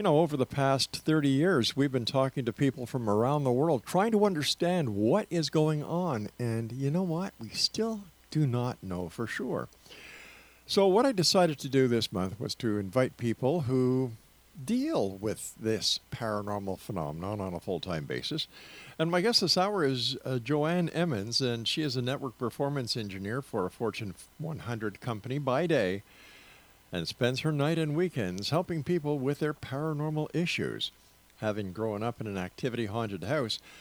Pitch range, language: 110-155 Hz, English